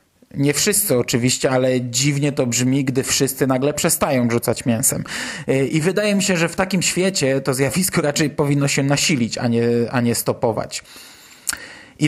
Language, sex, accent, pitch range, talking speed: Polish, male, native, 130-165 Hz, 165 wpm